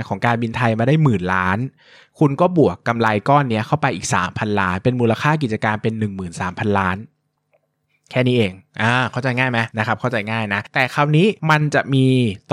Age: 20-39